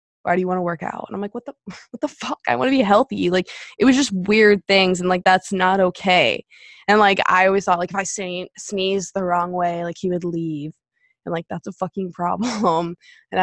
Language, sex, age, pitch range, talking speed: English, female, 20-39, 180-205 Hz, 240 wpm